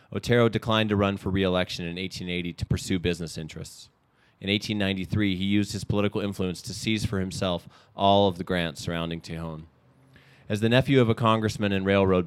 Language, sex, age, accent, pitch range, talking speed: English, male, 30-49, American, 90-110 Hz, 180 wpm